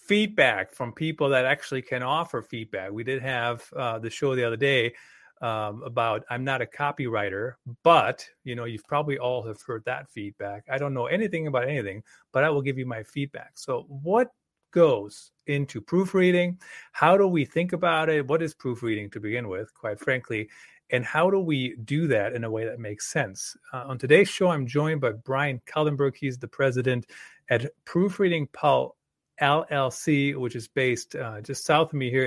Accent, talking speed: American, 195 wpm